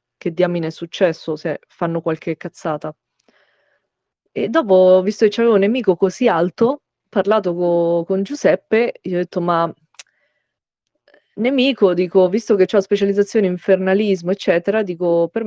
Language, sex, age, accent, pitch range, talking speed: Italian, female, 20-39, native, 170-210 Hz, 145 wpm